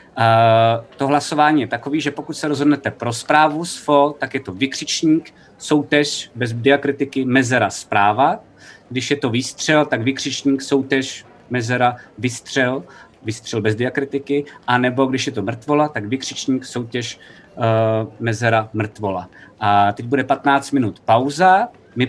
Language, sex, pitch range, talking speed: Czech, male, 115-140 Hz, 140 wpm